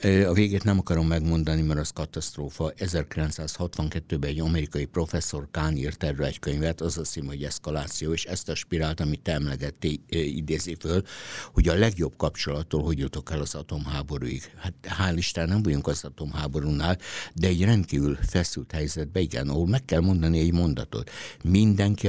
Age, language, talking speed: 60-79, Hungarian, 155 wpm